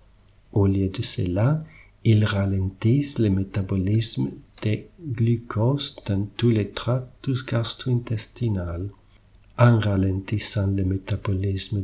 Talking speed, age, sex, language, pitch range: 95 wpm, 50-69, male, French, 100-120 Hz